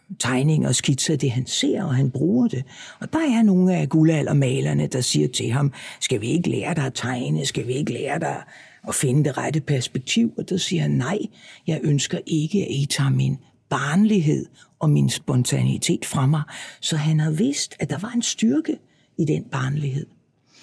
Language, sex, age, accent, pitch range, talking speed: Danish, female, 60-79, native, 140-195 Hz, 195 wpm